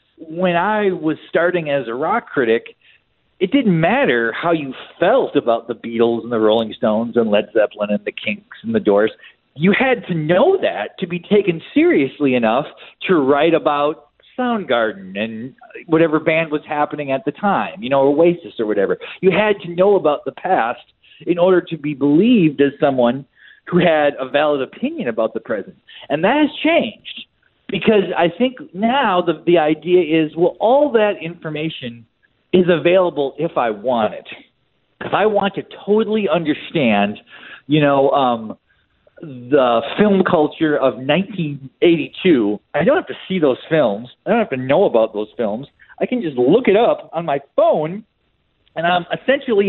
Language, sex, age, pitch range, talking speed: English, male, 40-59, 135-200 Hz, 170 wpm